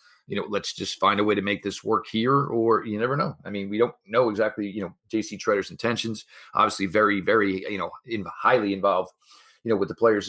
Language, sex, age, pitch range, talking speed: English, male, 40-59, 100-135 Hz, 235 wpm